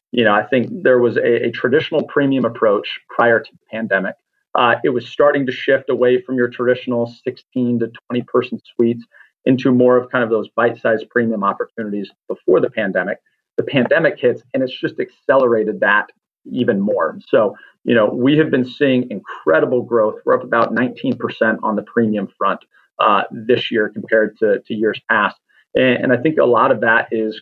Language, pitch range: English, 110-130 Hz